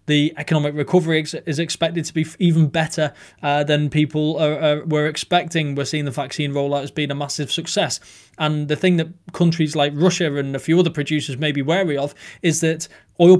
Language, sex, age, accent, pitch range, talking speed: English, male, 20-39, British, 140-160 Hz, 195 wpm